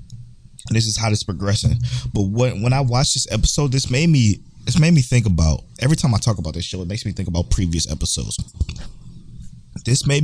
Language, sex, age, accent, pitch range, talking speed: English, male, 20-39, American, 70-110 Hz, 230 wpm